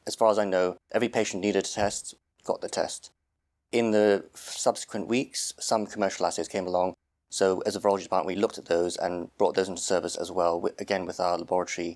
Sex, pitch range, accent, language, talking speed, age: male, 90-105 Hz, British, English, 210 wpm, 30-49